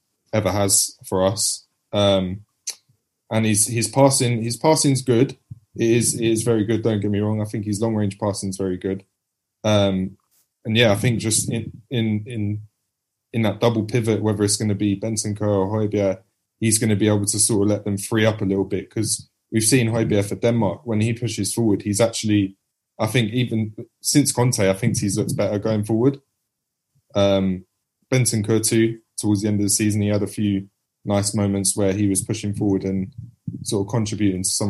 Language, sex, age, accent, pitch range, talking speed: English, male, 20-39, British, 95-115 Hz, 205 wpm